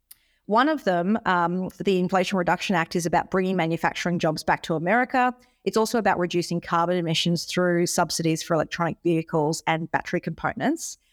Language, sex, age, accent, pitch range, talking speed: English, female, 30-49, Australian, 170-200 Hz, 160 wpm